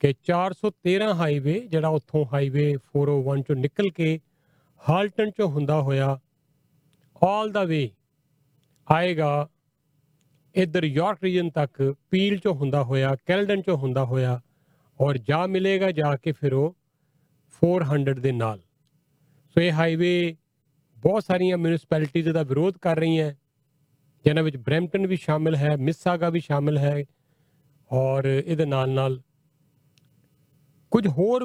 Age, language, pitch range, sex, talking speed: 40-59, Punjabi, 145-170 Hz, male, 130 wpm